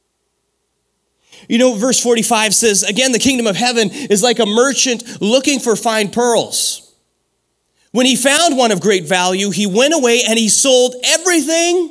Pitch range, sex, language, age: 145-235 Hz, male, English, 30-49